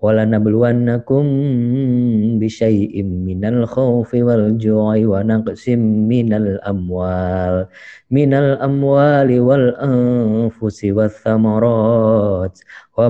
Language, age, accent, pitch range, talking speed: Indonesian, 20-39, native, 100-115 Hz, 70 wpm